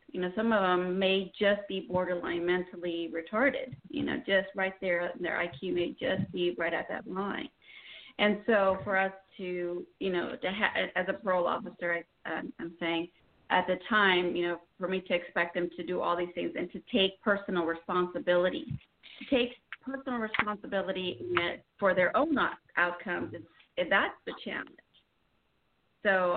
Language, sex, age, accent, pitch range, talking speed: English, female, 40-59, American, 175-210 Hz, 170 wpm